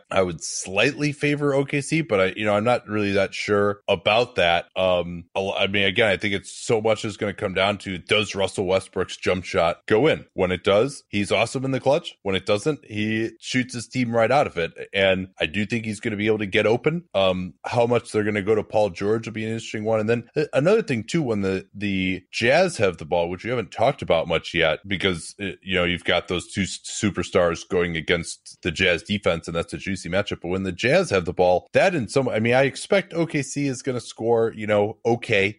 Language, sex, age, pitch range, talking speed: English, male, 30-49, 95-115 Hz, 240 wpm